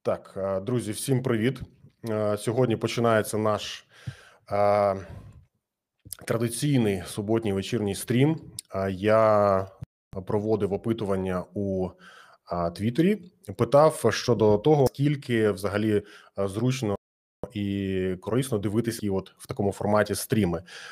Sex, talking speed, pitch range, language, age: male, 90 wpm, 100-135 Hz, Ukrainian, 20-39